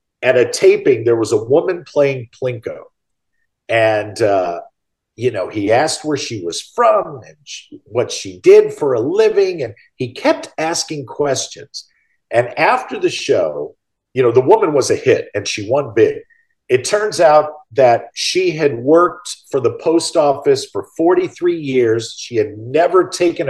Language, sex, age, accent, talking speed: English, male, 50-69, American, 165 wpm